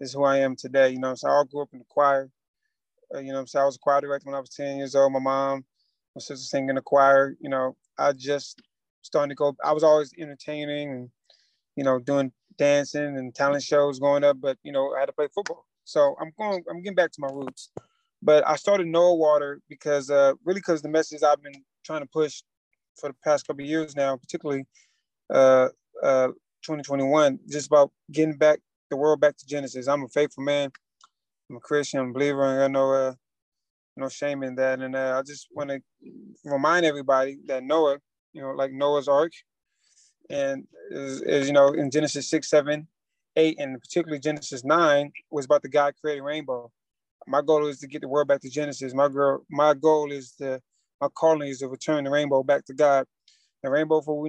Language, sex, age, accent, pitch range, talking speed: English, male, 20-39, American, 135-150 Hz, 215 wpm